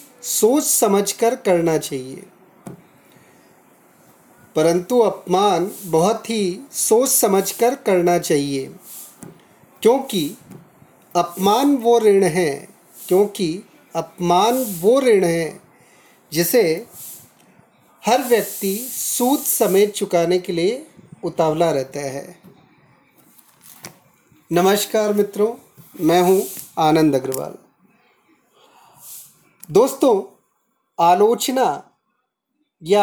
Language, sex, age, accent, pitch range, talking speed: Hindi, male, 40-59, native, 175-235 Hz, 75 wpm